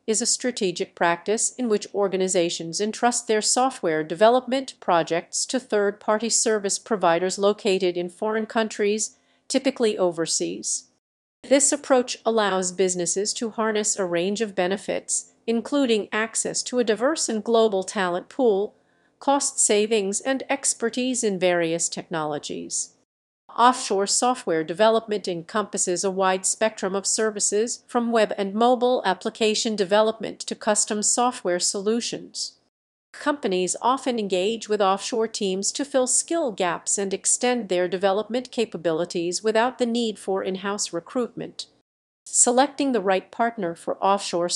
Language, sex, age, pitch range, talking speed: English, female, 50-69, 185-235 Hz, 125 wpm